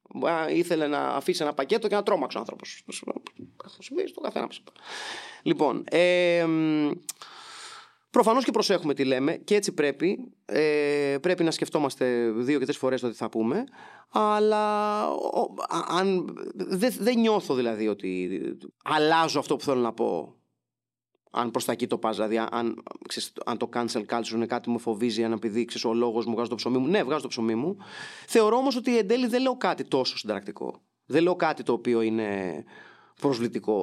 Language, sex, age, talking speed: Greek, male, 30-49, 160 wpm